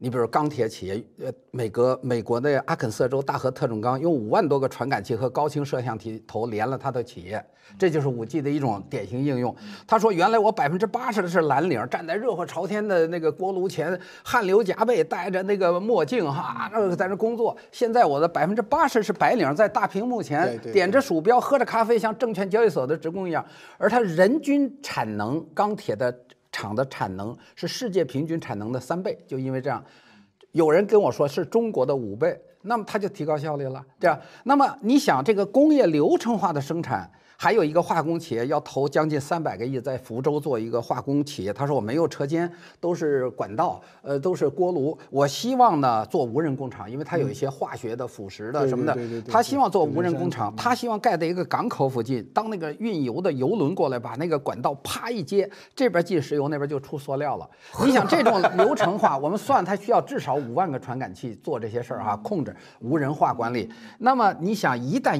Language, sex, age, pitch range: Chinese, male, 50-69, 130-210 Hz